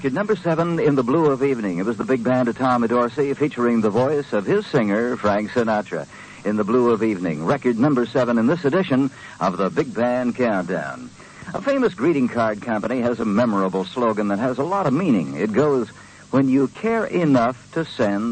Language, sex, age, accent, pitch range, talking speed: English, male, 60-79, American, 100-145 Hz, 205 wpm